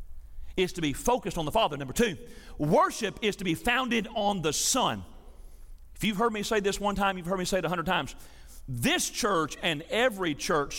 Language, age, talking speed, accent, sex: English, 40-59, 210 wpm, American, male